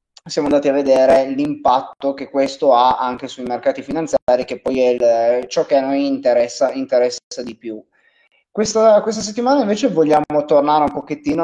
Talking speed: 170 wpm